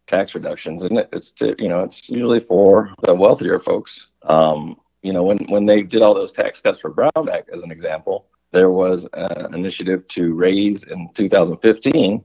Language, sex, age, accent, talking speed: English, male, 40-59, American, 180 wpm